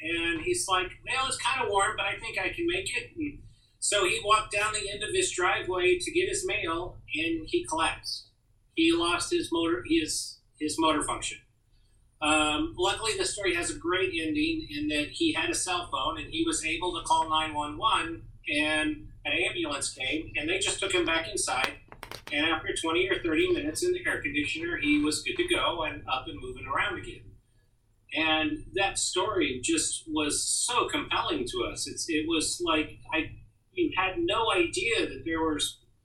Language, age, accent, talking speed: English, 40-59, American, 190 wpm